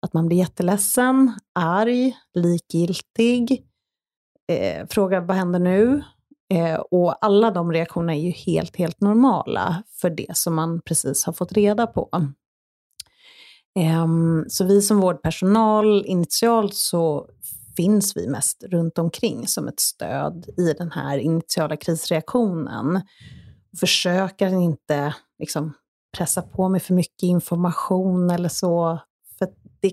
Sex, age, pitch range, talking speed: female, 30-49, 165-200 Hz, 125 wpm